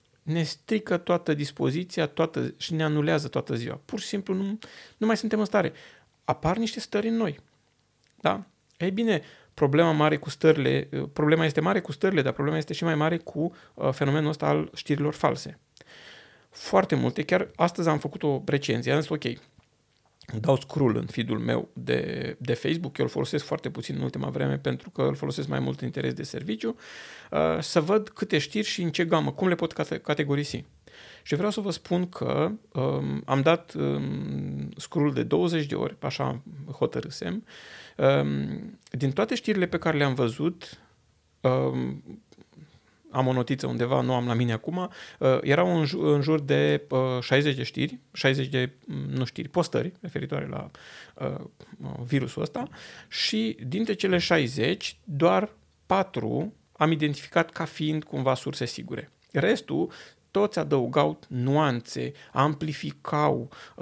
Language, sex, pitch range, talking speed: Romanian, male, 120-170 Hz, 155 wpm